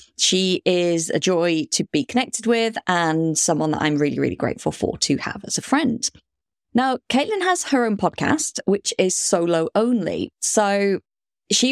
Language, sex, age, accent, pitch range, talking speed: English, female, 20-39, British, 160-235 Hz, 170 wpm